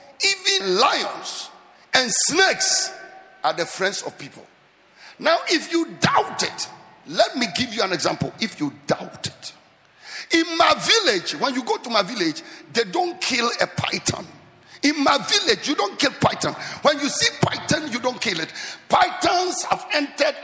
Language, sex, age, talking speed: English, male, 50-69, 165 wpm